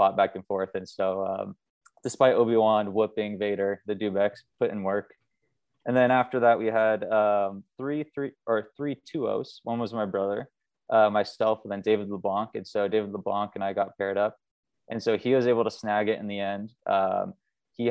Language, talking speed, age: English, 200 wpm, 20-39